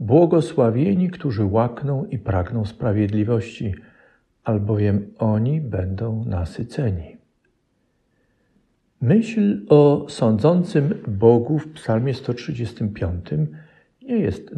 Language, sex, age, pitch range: Polish, male, 50-69, 105-145 Hz